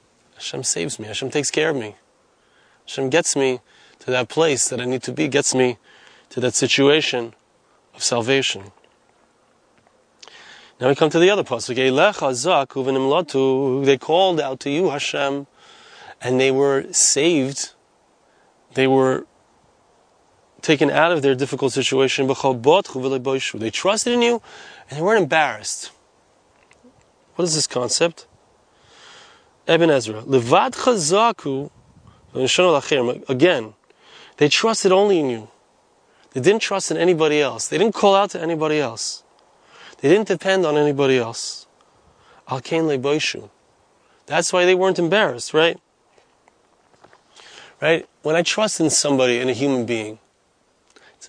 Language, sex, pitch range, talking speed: English, male, 130-170 Hz, 130 wpm